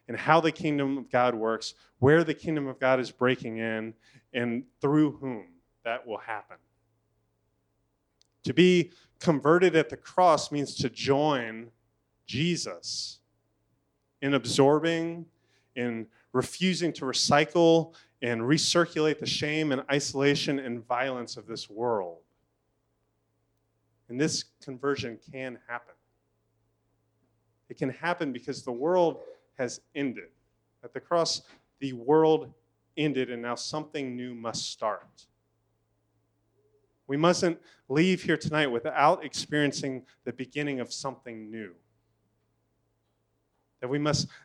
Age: 30-49